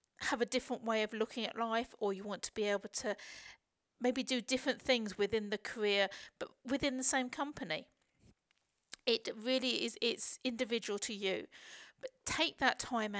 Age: 50-69